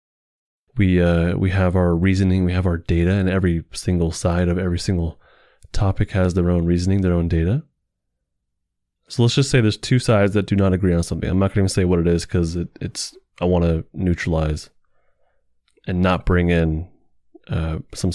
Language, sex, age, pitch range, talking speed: English, male, 20-39, 85-110 Hz, 195 wpm